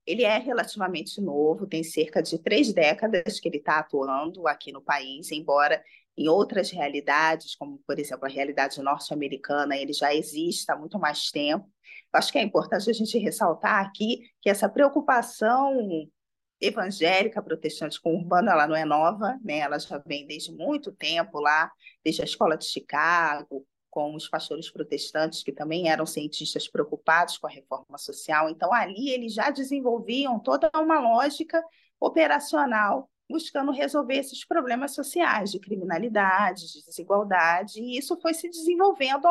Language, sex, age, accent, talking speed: Portuguese, female, 20-39, Brazilian, 155 wpm